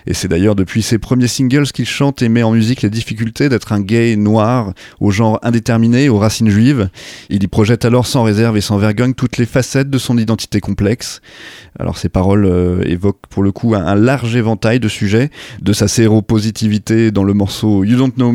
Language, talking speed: French, 210 wpm